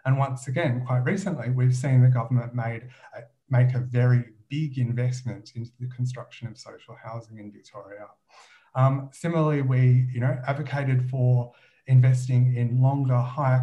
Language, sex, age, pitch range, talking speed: English, male, 30-49, 120-135 Hz, 155 wpm